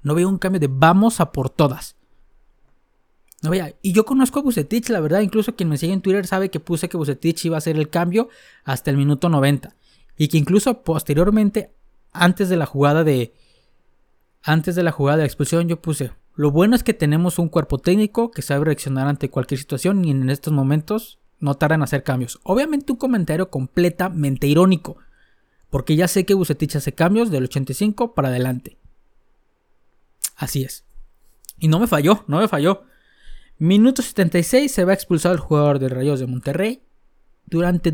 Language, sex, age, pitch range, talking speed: Spanish, male, 20-39, 145-185 Hz, 185 wpm